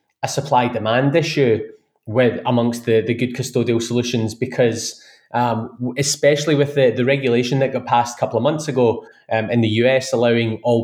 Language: English